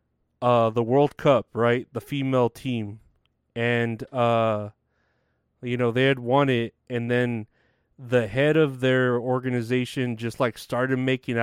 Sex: male